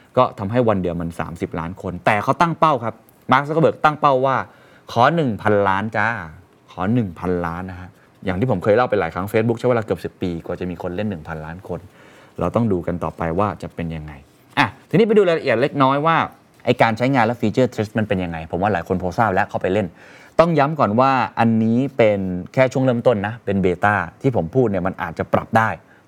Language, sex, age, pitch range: Thai, male, 20-39, 95-125 Hz